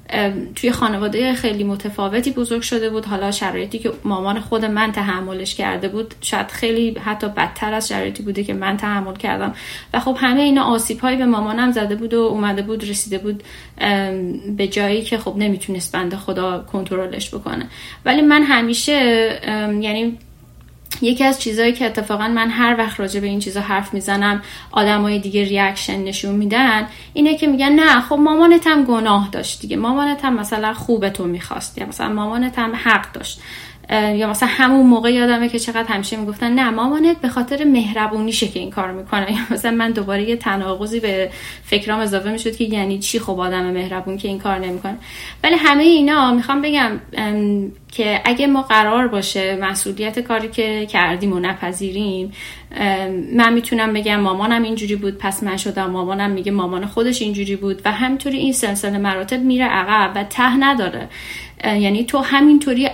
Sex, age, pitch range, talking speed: female, 10-29, 200-240 Hz, 170 wpm